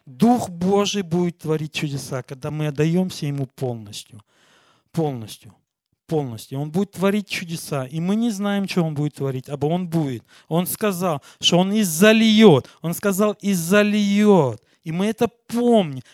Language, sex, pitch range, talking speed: Russian, male, 145-205 Hz, 150 wpm